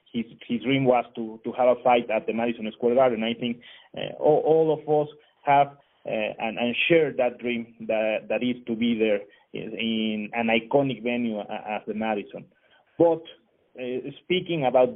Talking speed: 180 wpm